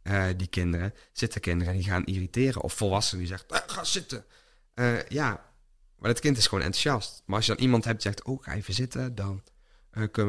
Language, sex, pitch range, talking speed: Dutch, male, 95-110 Hz, 220 wpm